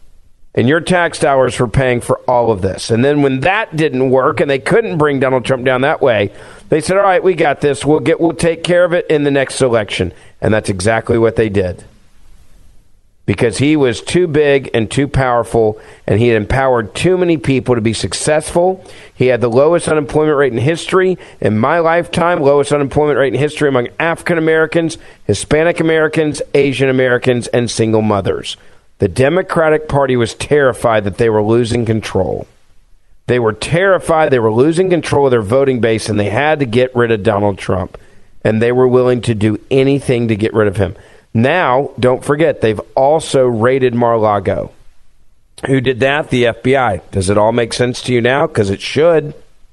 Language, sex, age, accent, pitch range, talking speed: English, male, 50-69, American, 115-155 Hz, 185 wpm